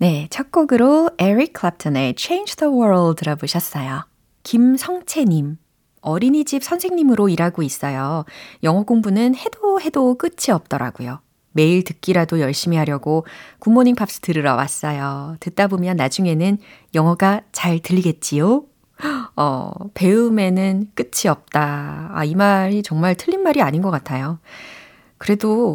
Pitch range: 155-220 Hz